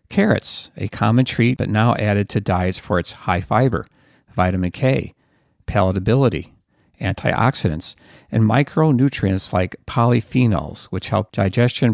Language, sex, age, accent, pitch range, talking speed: English, male, 50-69, American, 100-125 Hz, 120 wpm